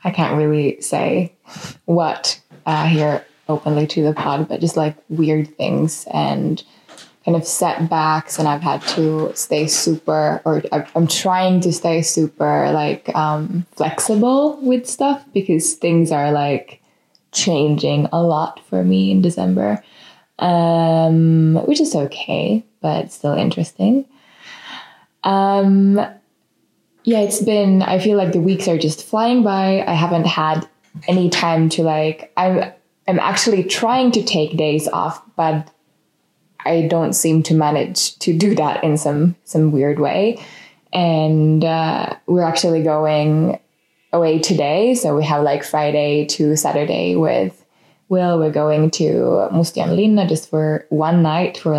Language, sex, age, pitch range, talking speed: English, female, 20-39, 155-185 Hz, 145 wpm